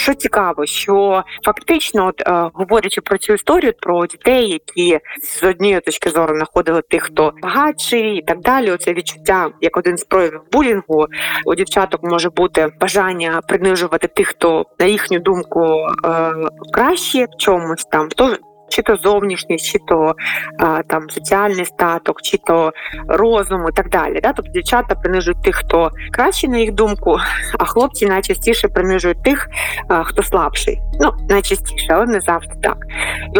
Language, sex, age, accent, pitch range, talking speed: Ukrainian, female, 20-39, native, 170-225 Hz, 160 wpm